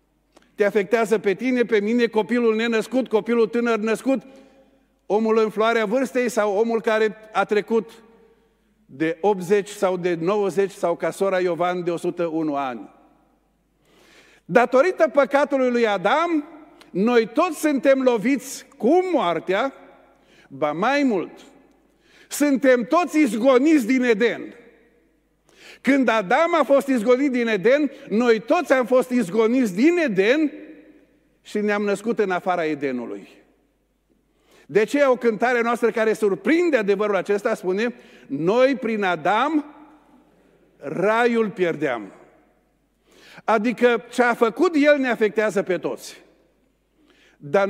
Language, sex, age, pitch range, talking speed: Romanian, male, 50-69, 200-265 Hz, 120 wpm